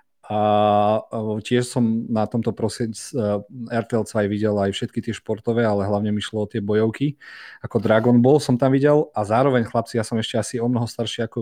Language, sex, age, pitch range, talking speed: Slovak, male, 40-59, 105-120 Hz, 195 wpm